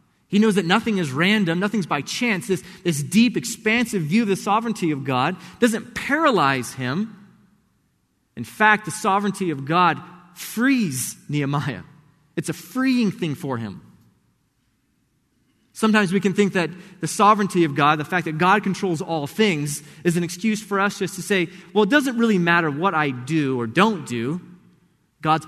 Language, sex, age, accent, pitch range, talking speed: English, male, 30-49, American, 145-200 Hz, 170 wpm